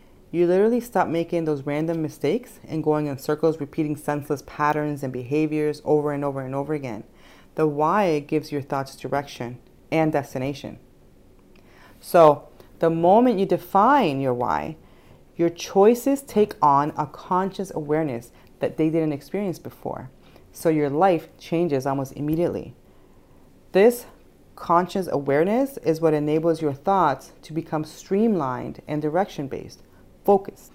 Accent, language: American, English